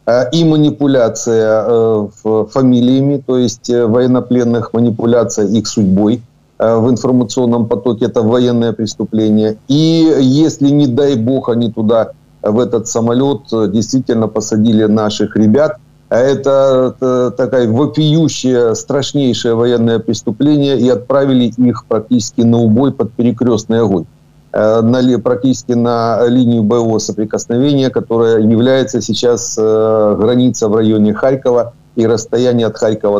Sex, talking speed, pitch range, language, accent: male, 115 wpm, 110-130 Hz, Ukrainian, native